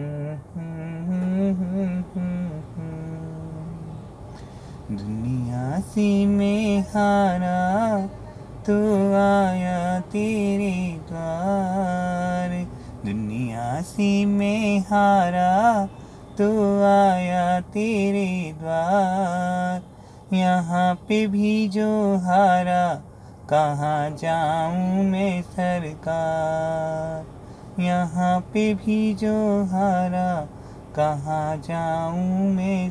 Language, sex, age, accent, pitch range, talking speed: Hindi, male, 30-49, native, 160-200 Hz, 60 wpm